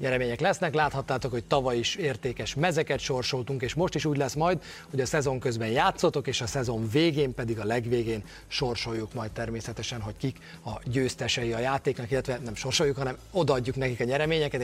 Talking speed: 175 wpm